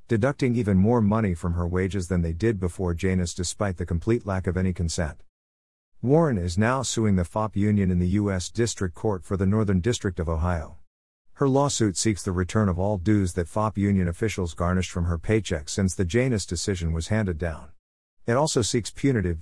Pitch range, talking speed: 85-110 Hz, 200 wpm